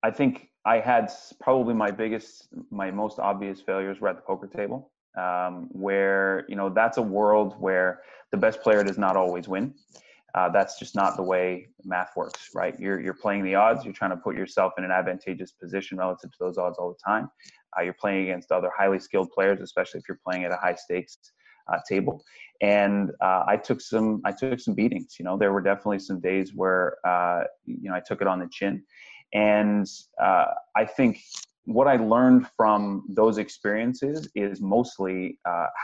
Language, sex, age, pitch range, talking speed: English, male, 20-39, 95-105 Hz, 200 wpm